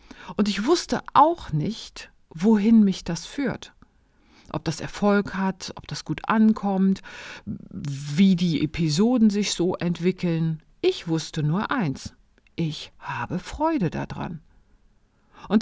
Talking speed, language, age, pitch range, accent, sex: 125 wpm, German, 40-59, 160-220 Hz, German, female